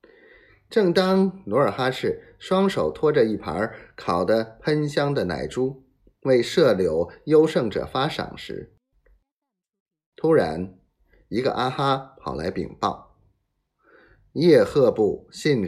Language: Chinese